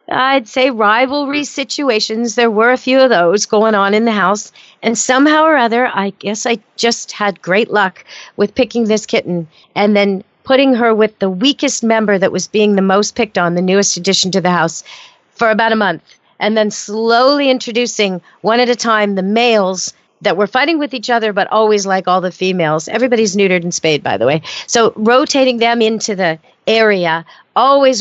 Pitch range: 190-245 Hz